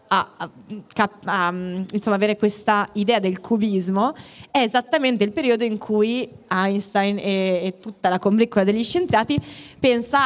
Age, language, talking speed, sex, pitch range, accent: 20-39, Italian, 140 wpm, female, 195-235 Hz, native